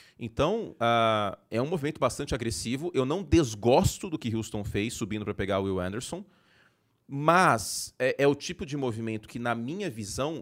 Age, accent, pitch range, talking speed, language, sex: 30-49, Brazilian, 105-140 Hz, 175 wpm, Portuguese, male